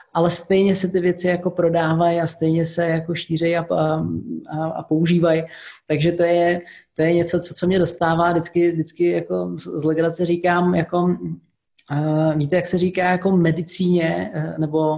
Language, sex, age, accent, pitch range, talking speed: Czech, male, 20-39, native, 165-180 Hz, 155 wpm